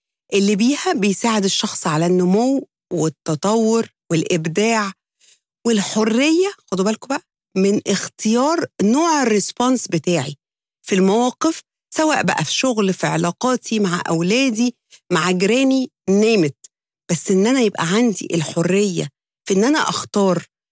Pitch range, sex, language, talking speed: 180-235 Hz, female, English, 115 wpm